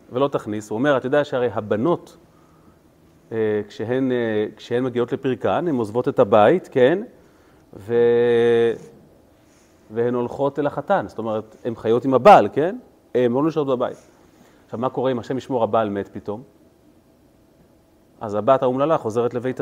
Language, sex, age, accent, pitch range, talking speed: Hebrew, male, 30-49, native, 120-165 Hz, 155 wpm